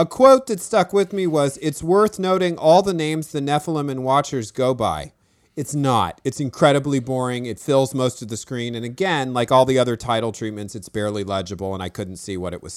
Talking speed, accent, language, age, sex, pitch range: 225 wpm, American, English, 40-59, male, 115-155 Hz